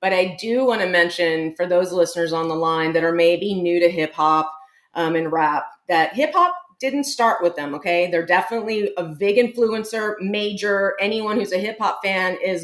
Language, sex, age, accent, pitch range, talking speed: English, female, 30-49, American, 165-215 Hz, 205 wpm